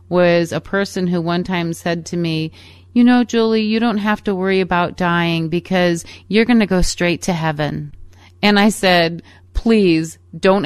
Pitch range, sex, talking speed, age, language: 145-190 Hz, female, 180 wpm, 30-49, English